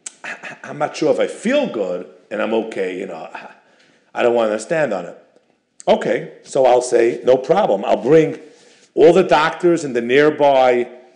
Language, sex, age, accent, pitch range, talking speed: English, male, 50-69, American, 120-185 Hz, 175 wpm